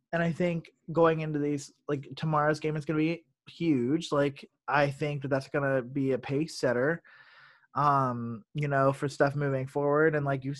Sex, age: male, 20-39